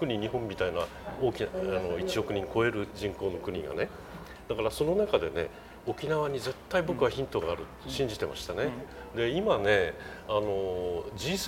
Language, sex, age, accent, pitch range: Japanese, male, 40-59, native, 135-225 Hz